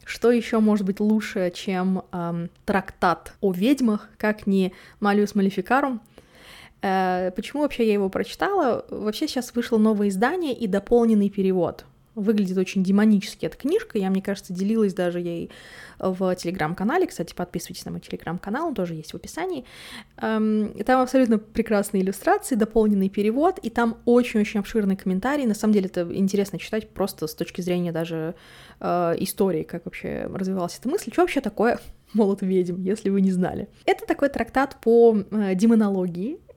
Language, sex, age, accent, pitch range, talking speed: Russian, female, 20-39, native, 190-240 Hz, 150 wpm